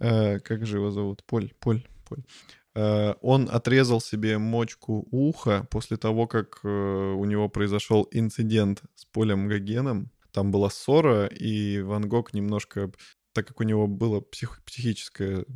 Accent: native